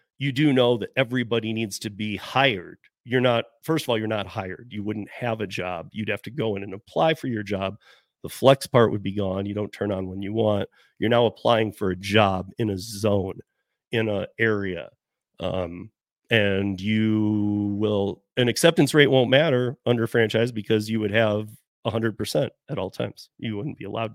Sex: male